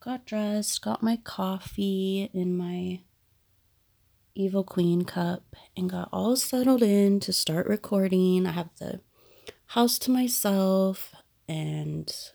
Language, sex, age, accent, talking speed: English, female, 30-49, American, 120 wpm